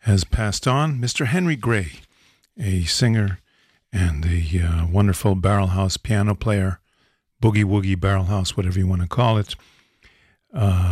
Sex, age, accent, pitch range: male, 50-69, American, 95-110 Hz